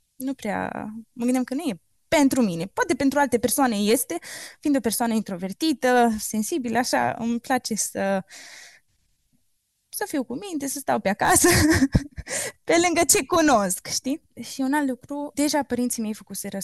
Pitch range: 205-270 Hz